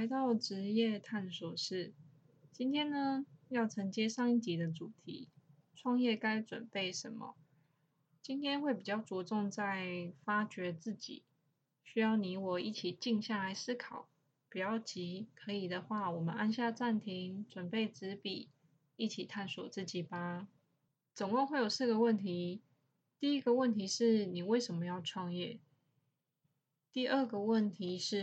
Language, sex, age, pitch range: Chinese, female, 20-39, 175-225 Hz